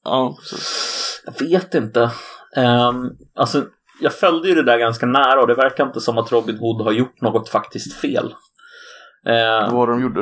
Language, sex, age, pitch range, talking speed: Swedish, male, 30-49, 110-150 Hz, 165 wpm